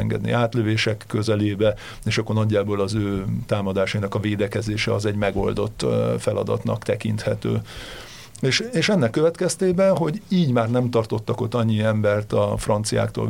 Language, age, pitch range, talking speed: Hungarian, 50-69, 110-135 Hz, 135 wpm